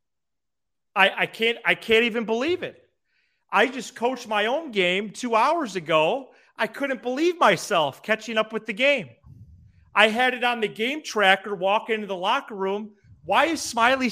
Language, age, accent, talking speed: English, 40-59, American, 175 wpm